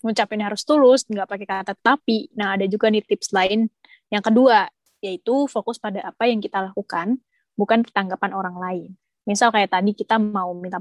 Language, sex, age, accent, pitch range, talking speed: Indonesian, female, 20-39, native, 195-240 Hz, 180 wpm